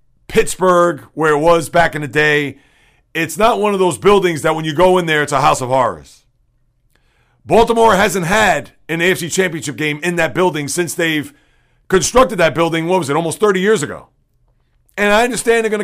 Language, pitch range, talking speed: English, 140-185 Hz, 195 wpm